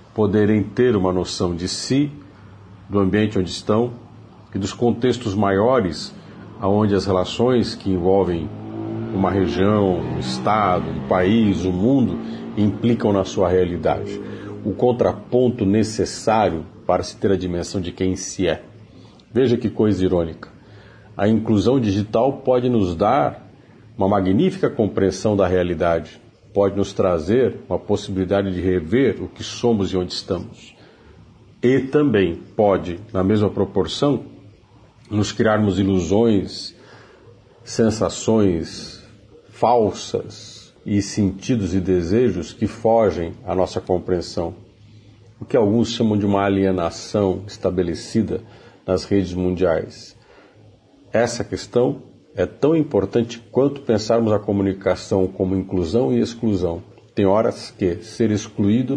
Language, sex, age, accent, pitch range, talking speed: Portuguese, male, 50-69, Brazilian, 95-115 Hz, 125 wpm